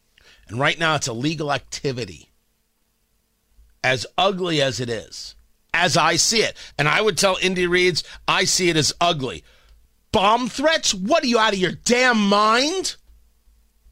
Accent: American